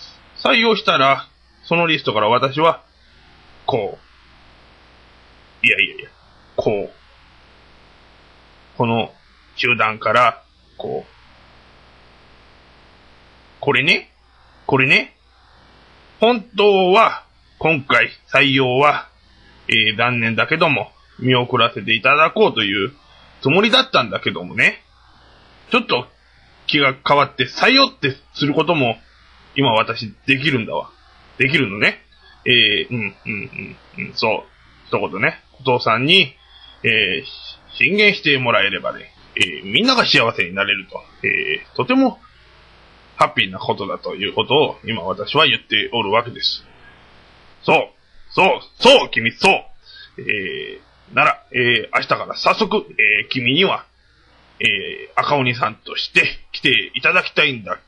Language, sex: Japanese, male